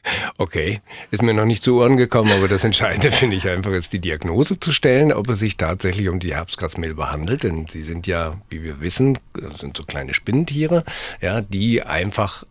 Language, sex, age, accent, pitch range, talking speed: German, male, 50-69, German, 85-115 Hz, 195 wpm